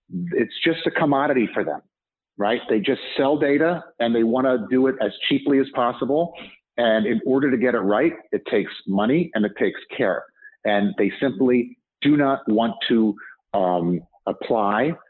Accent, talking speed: American, 175 wpm